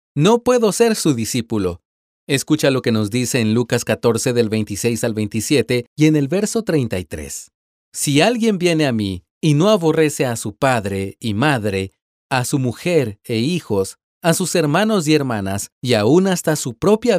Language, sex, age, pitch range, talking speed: Spanish, male, 40-59, 110-160 Hz, 175 wpm